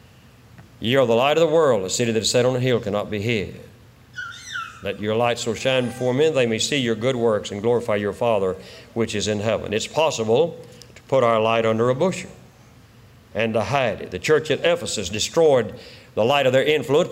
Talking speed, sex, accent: 215 wpm, male, American